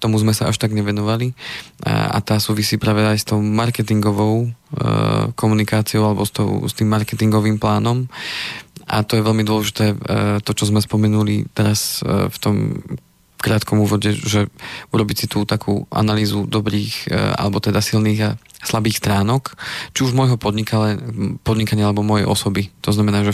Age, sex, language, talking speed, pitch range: 20-39, male, Slovak, 165 wpm, 105-110 Hz